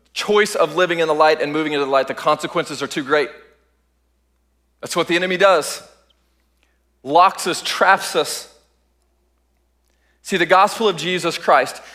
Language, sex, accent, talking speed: English, male, American, 155 wpm